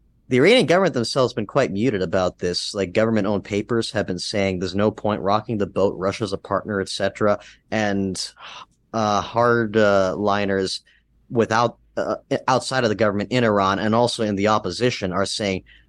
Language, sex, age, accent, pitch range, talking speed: English, male, 30-49, American, 95-110 Hz, 175 wpm